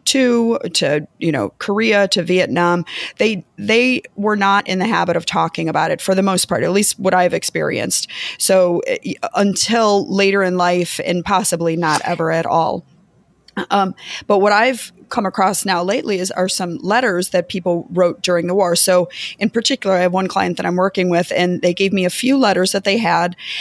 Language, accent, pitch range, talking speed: English, American, 185-230 Hz, 195 wpm